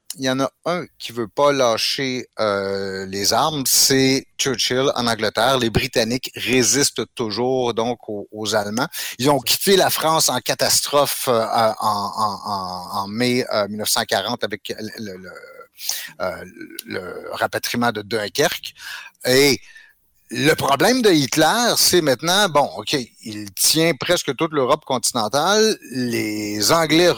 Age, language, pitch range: 60-79, French, 115-165 Hz